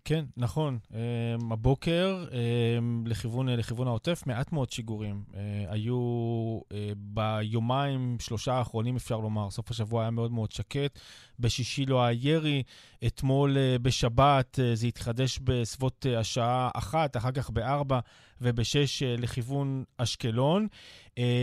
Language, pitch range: Hebrew, 120-155 Hz